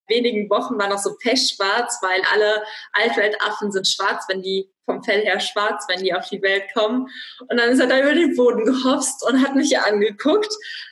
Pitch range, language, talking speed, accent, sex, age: 225-275 Hz, German, 205 wpm, German, female, 20-39